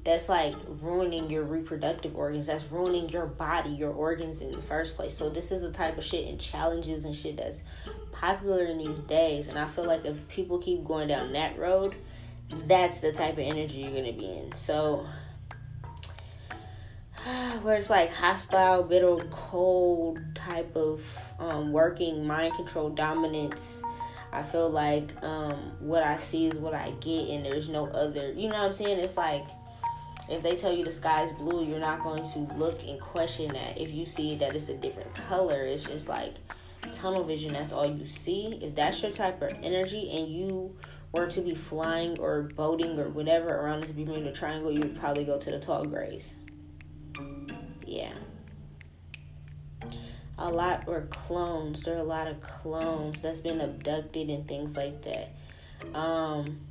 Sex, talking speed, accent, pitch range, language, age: female, 180 wpm, American, 145-170 Hz, English, 10-29